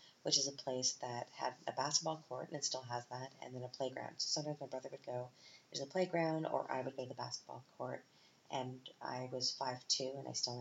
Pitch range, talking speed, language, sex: 130-160 Hz, 240 wpm, English, female